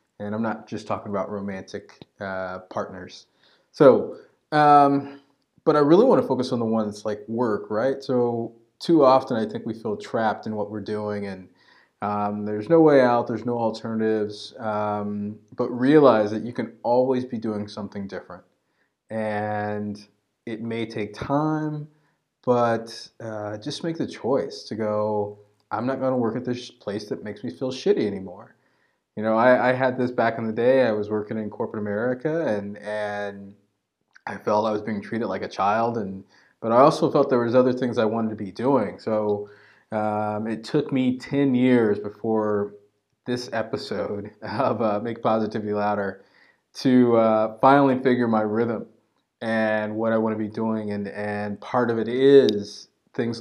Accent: American